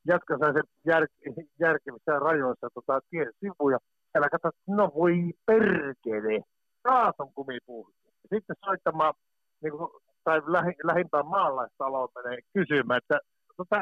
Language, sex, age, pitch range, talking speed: Finnish, male, 50-69, 155-230 Hz, 125 wpm